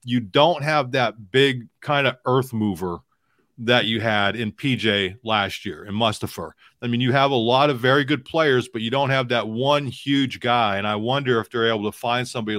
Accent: American